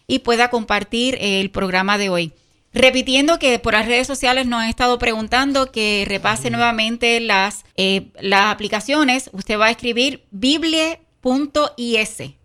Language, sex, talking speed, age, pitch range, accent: Spanish, female, 135 wpm, 30-49, 220-260 Hz, American